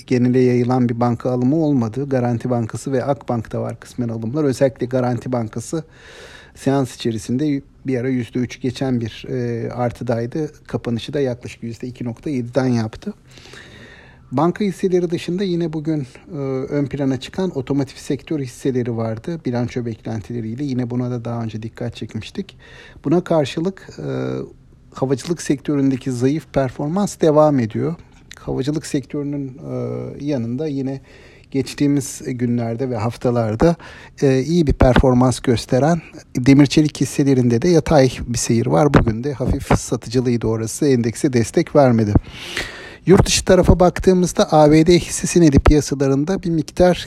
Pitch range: 120-150 Hz